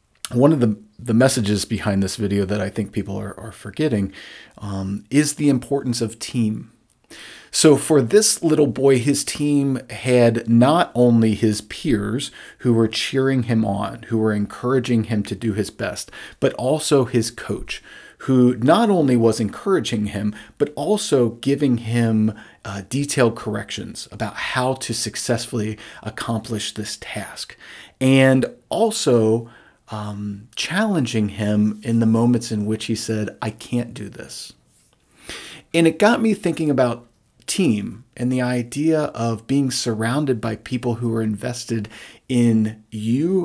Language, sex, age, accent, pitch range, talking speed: English, male, 40-59, American, 110-135 Hz, 145 wpm